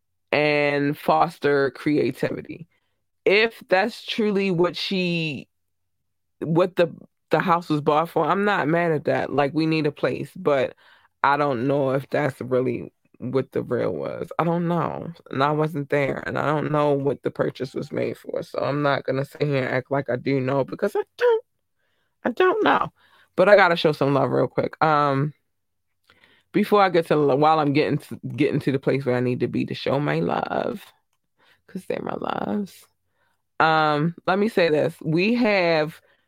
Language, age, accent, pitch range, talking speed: English, 20-39, American, 135-170 Hz, 185 wpm